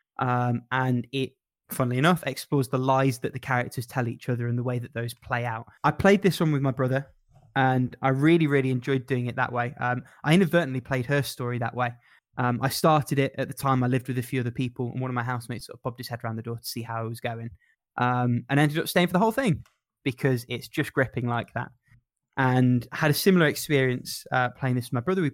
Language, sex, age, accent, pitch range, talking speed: English, male, 20-39, British, 125-145 Hz, 250 wpm